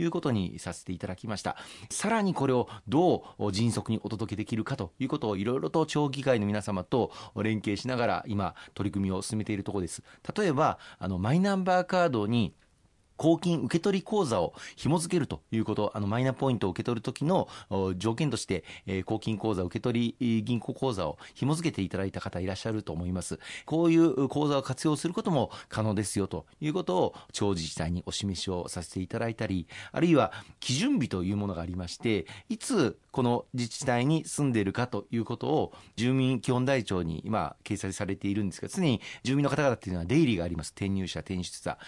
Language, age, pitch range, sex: Japanese, 40-59, 100-145 Hz, male